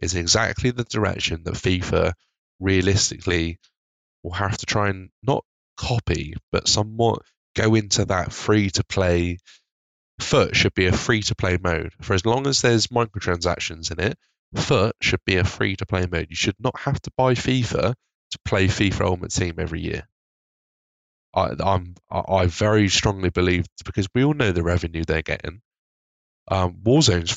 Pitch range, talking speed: 85-110 Hz, 160 wpm